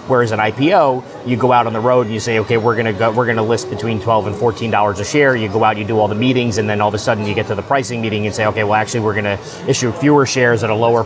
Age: 30-49